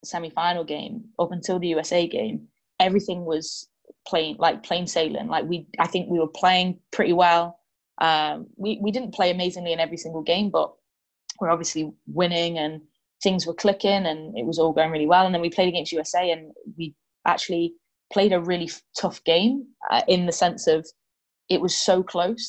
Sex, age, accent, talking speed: female, 20-39, British, 185 wpm